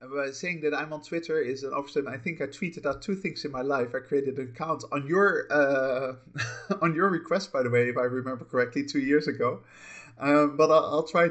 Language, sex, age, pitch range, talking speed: English, male, 30-49, 120-160 Hz, 240 wpm